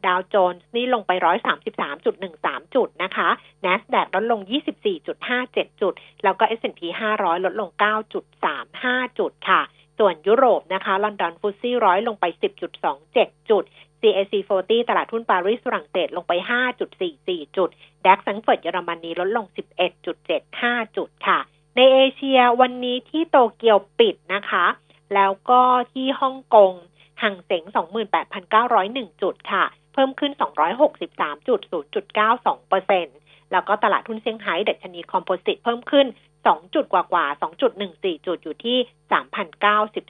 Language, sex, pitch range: Thai, female, 185-250 Hz